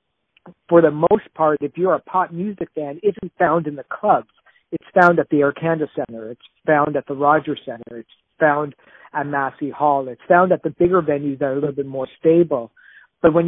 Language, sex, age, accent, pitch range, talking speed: English, male, 50-69, American, 145-180 Hz, 215 wpm